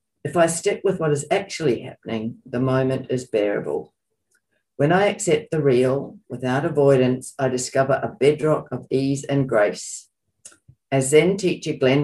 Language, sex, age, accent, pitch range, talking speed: English, female, 50-69, Australian, 120-145 Hz, 155 wpm